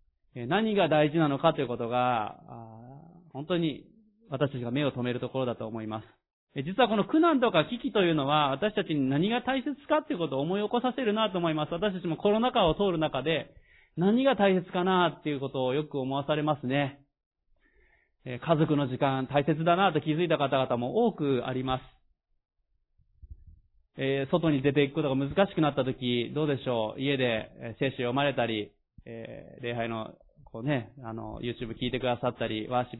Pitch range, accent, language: 125-180 Hz, native, Japanese